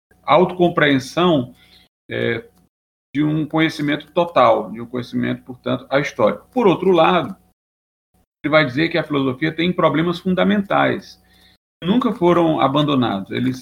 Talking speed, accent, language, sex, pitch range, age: 130 wpm, Brazilian, Portuguese, male, 125-160 Hz, 40-59